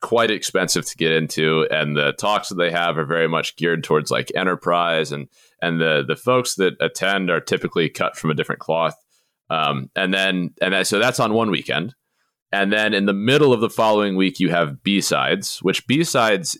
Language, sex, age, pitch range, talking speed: English, male, 30-49, 80-110 Hz, 200 wpm